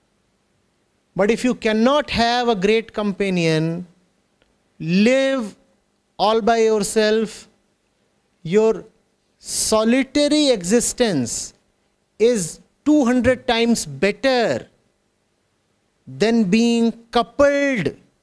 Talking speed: 70 wpm